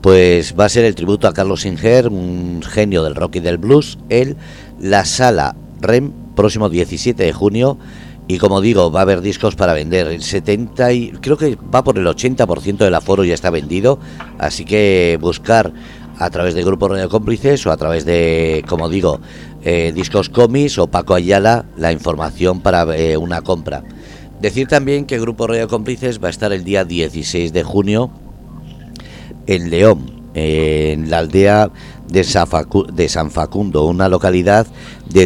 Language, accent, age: Spanish, Spanish, 50-69